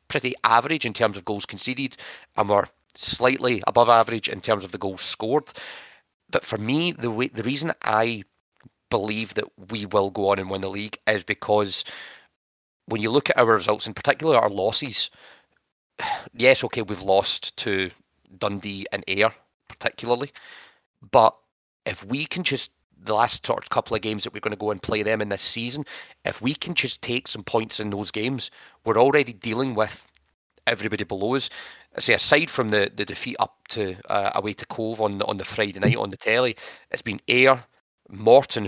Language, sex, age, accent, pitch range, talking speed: English, male, 30-49, British, 100-125 Hz, 185 wpm